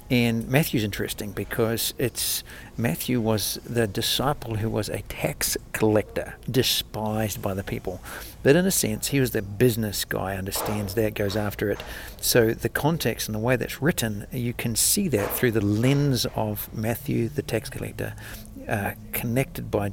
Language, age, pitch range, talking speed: English, 60-79, 105-120 Hz, 165 wpm